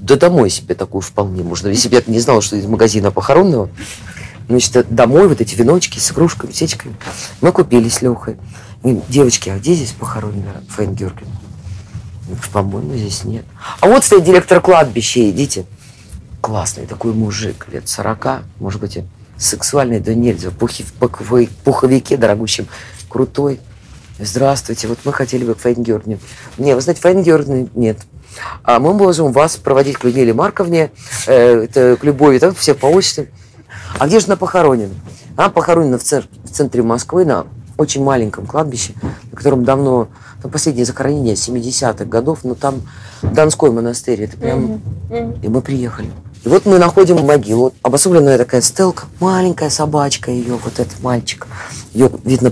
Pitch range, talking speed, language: 105-140 Hz, 150 wpm, Russian